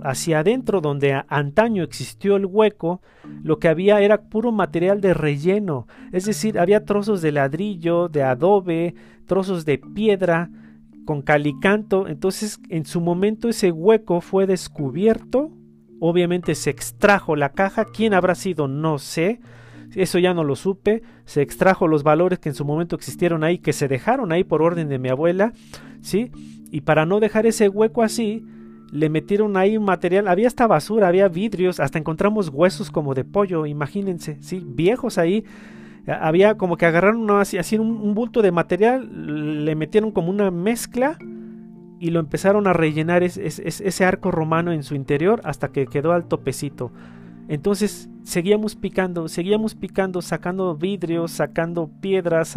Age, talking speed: 40-59, 160 wpm